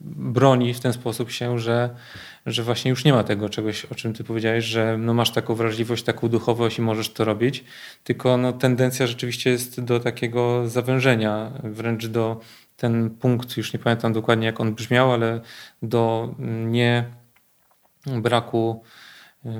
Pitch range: 115-130 Hz